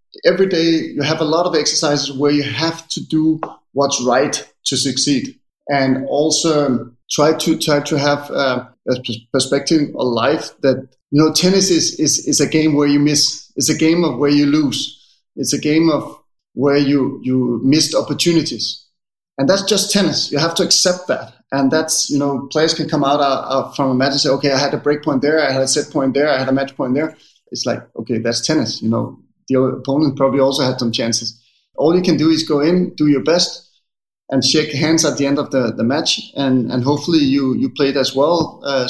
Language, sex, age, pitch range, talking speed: English, male, 30-49, 125-155 Hz, 220 wpm